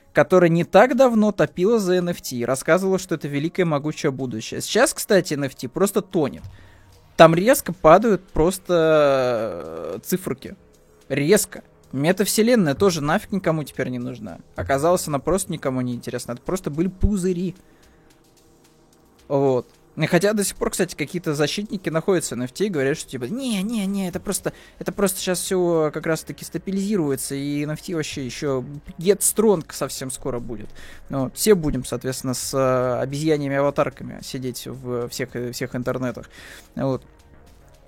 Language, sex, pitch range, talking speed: Russian, male, 130-185 Hz, 145 wpm